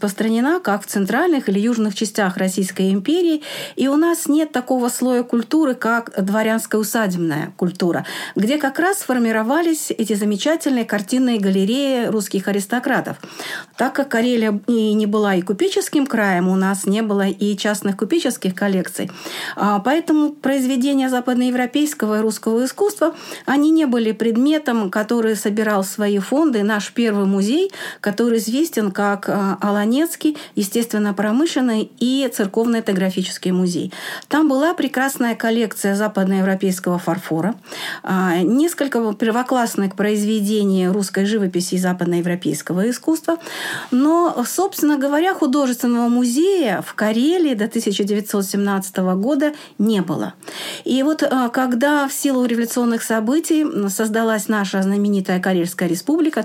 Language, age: Russian, 50-69